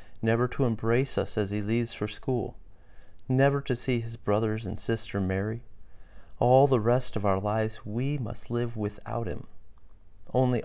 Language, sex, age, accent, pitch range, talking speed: English, male, 40-59, American, 95-110 Hz, 165 wpm